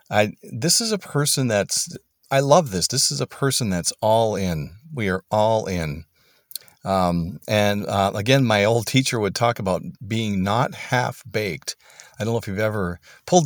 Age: 40-59